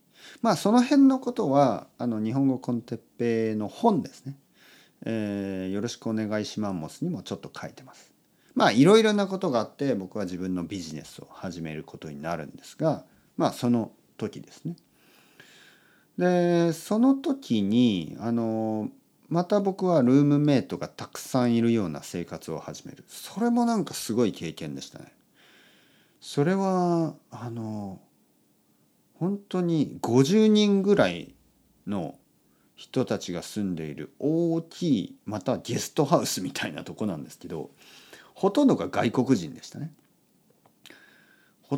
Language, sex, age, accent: Japanese, male, 40-59, native